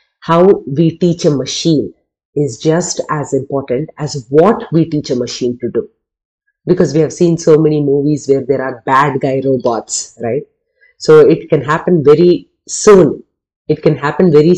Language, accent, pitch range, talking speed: English, Indian, 135-165 Hz, 170 wpm